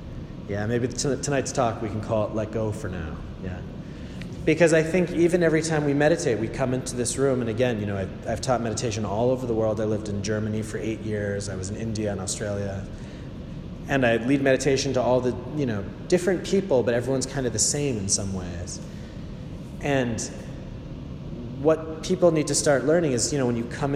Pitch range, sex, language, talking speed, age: 110-140 Hz, male, English, 215 wpm, 30-49